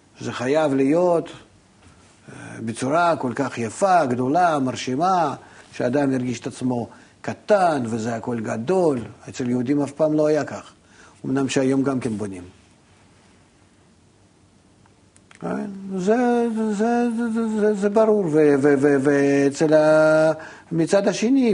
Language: Hebrew